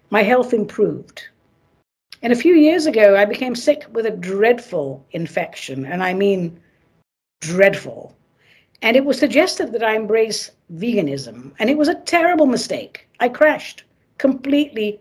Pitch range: 195-275 Hz